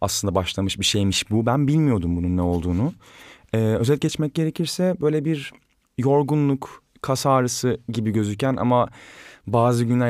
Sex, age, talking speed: male, 30-49, 145 wpm